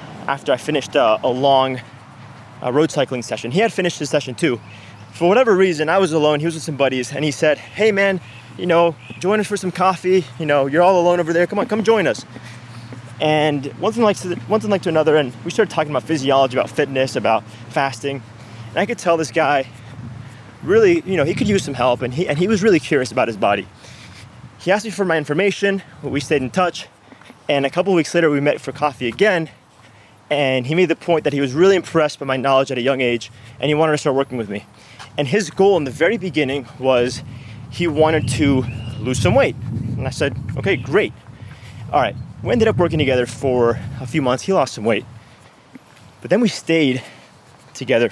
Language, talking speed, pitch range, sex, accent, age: English, 225 wpm, 125-170 Hz, male, American, 20-39